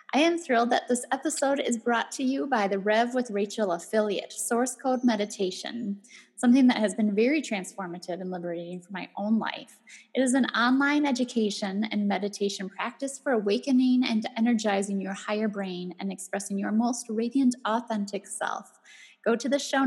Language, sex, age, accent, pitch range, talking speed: English, female, 10-29, American, 200-250 Hz, 170 wpm